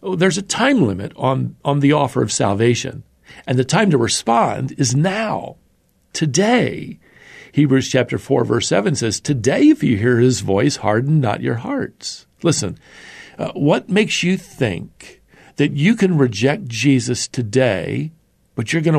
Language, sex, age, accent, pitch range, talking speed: English, male, 50-69, American, 110-145 Hz, 155 wpm